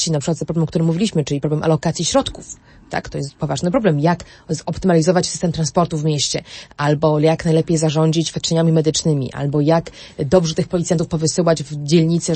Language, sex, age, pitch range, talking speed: Polish, female, 30-49, 155-185 Hz, 170 wpm